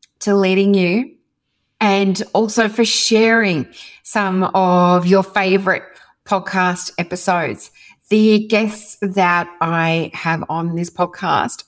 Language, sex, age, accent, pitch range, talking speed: English, female, 30-49, Australian, 175-225 Hz, 110 wpm